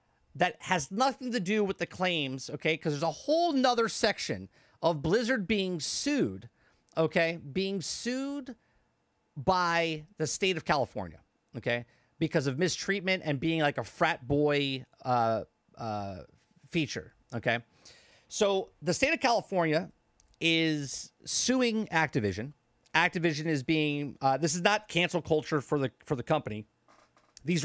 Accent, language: American, English